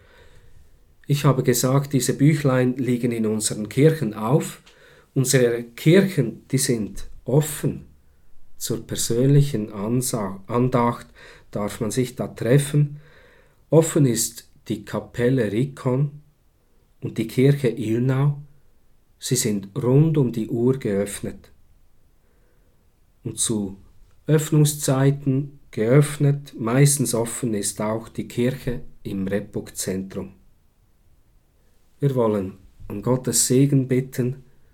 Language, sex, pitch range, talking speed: German, male, 100-135 Hz, 100 wpm